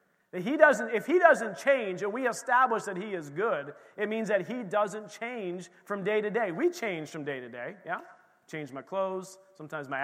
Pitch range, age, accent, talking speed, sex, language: 155-205 Hz, 30-49, American, 210 wpm, male, English